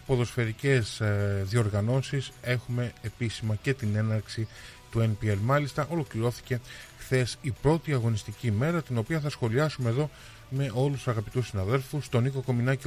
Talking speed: 135 wpm